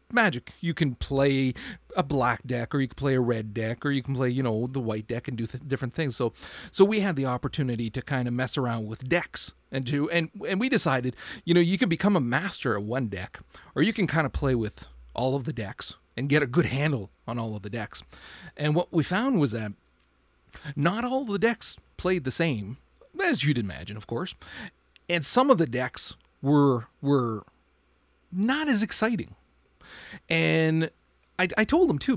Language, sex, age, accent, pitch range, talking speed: English, male, 40-59, American, 110-170 Hz, 205 wpm